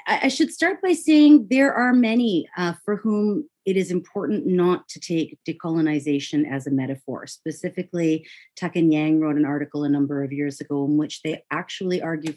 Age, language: 30-49, English